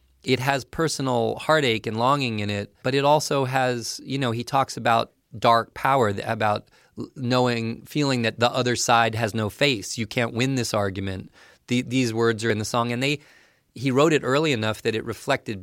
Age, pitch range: 30-49, 105-125 Hz